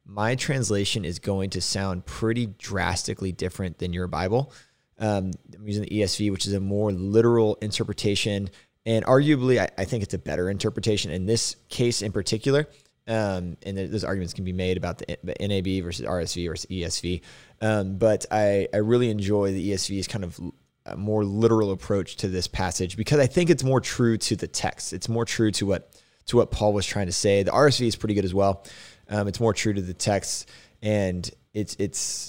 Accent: American